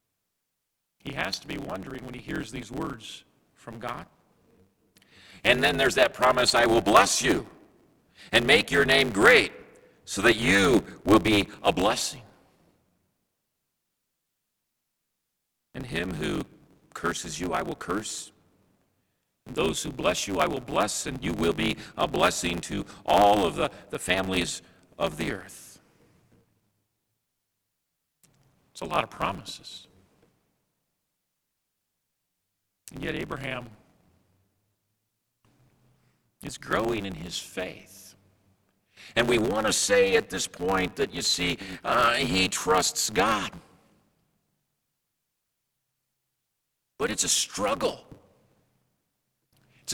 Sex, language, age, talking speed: male, English, 50-69, 115 wpm